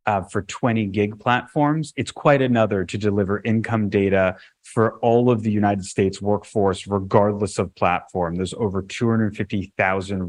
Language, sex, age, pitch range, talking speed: English, male, 30-49, 100-125 Hz, 145 wpm